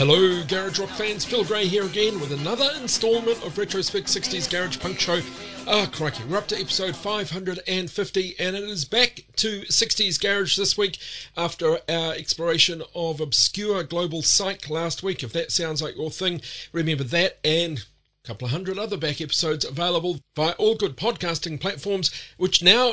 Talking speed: 175 wpm